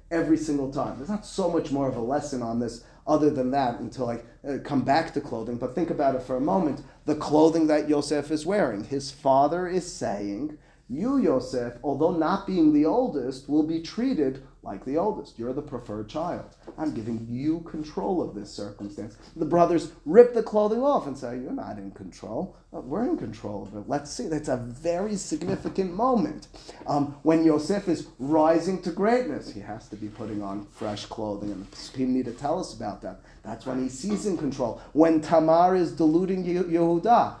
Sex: male